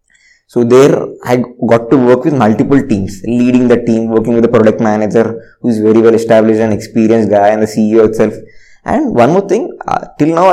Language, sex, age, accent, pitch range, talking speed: English, male, 20-39, Indian, 110-125 Hz, 205 wpm